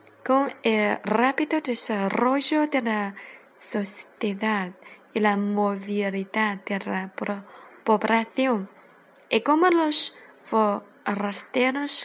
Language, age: Chinese, 20-39